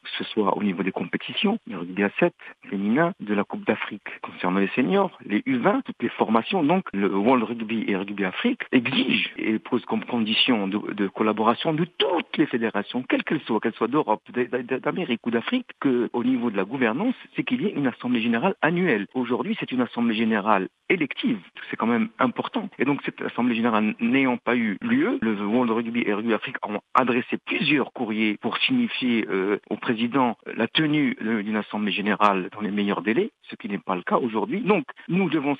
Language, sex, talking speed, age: Arabic, male, 200 wpm, 50-69